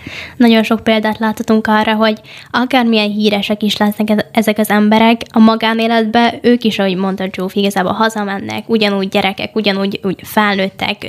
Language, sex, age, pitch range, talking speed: Hungarian, female, 10-29, 205-225 Hz, 145 wpm